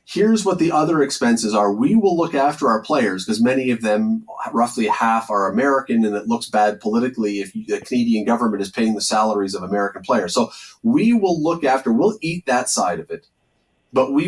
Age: 30-49